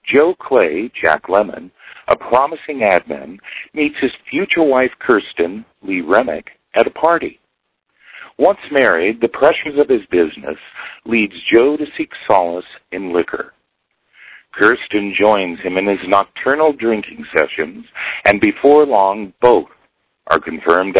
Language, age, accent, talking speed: English, 50-69, American, 130 wpm